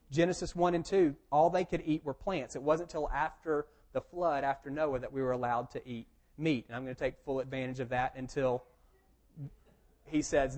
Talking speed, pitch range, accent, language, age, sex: 210 wpm, 130-175 Hz, American, English, 40-59, male